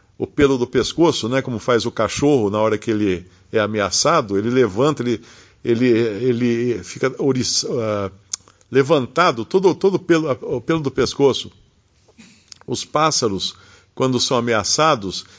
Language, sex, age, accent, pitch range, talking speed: Portuguese, male, 50-69, Brazilian, 100-140 Hz, 140 wpm